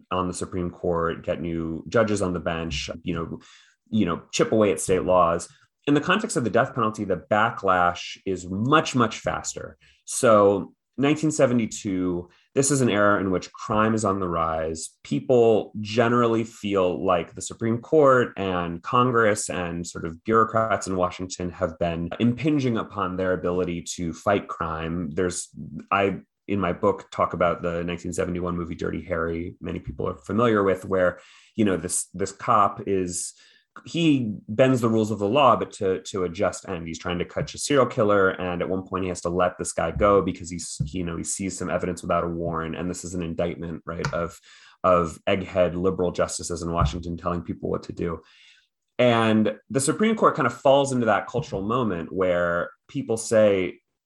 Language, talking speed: English, 185 wpm